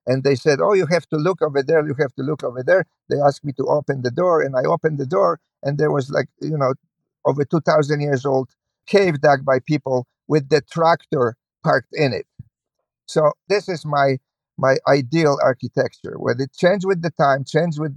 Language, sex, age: English, male, 50-69